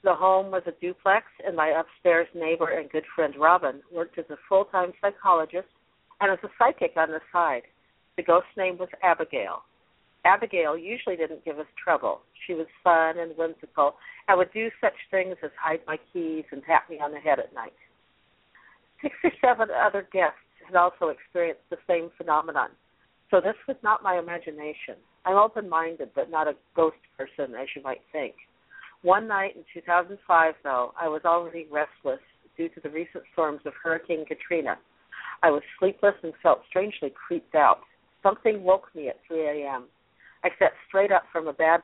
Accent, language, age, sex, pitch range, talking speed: American, English, 50-69, female, 155-190 Hz, 180 wpm